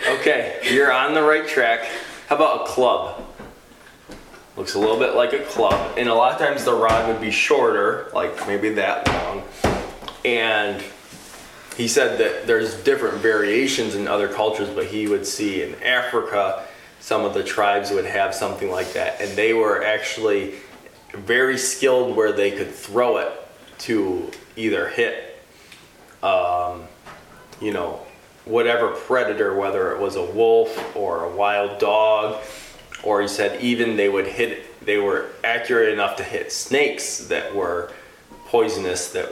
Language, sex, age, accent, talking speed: English, male, 20-39, American, 155 wpm